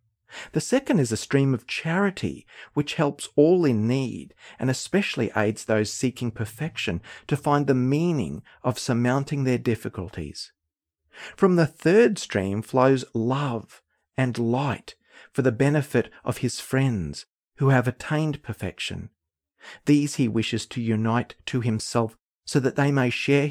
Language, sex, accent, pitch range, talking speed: English, male, Australian, 110-140 Hz, 145 wpm